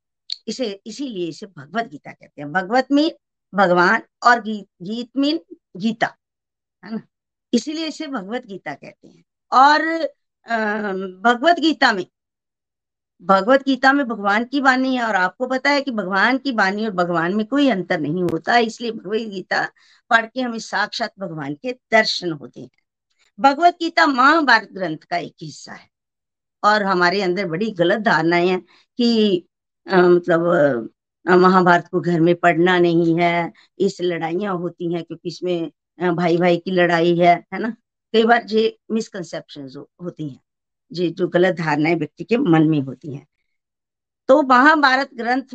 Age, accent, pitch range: 50-69, native, 175-255 Hz